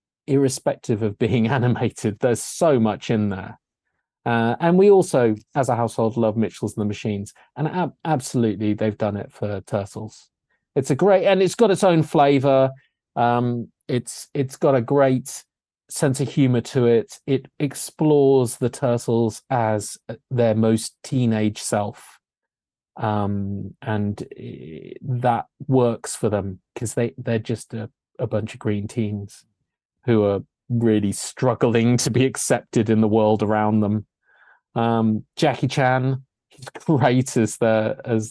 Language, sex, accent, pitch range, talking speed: English, male, British, 110-130 Hz, 145 wpm